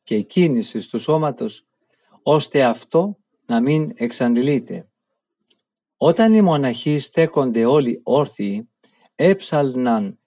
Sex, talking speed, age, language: male, 95 wpm, 50-69, Greek